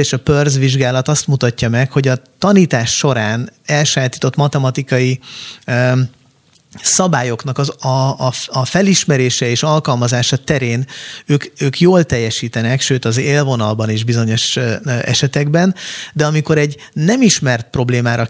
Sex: male